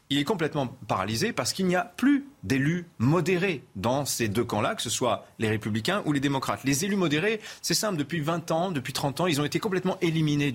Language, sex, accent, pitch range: French, male, French, 110-170 Hz